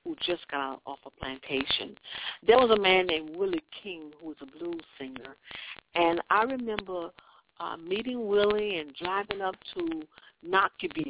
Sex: female